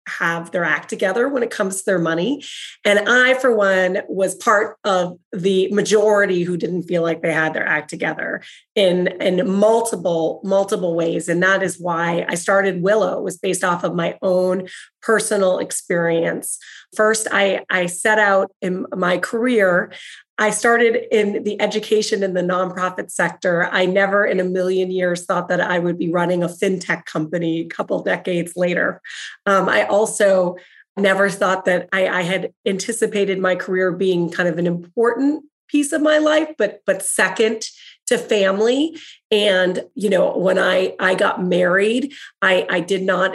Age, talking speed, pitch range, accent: 30-49, 170 wpm, 180-215 Hz, American